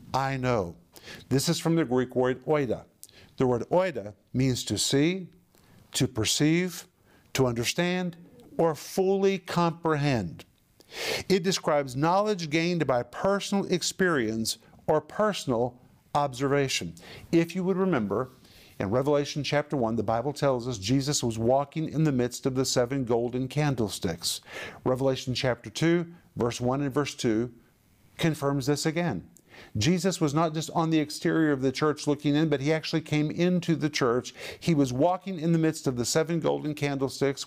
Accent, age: American, 50-69